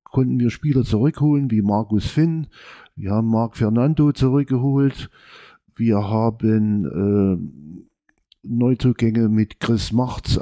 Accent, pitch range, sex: German, 105-125 Hz, male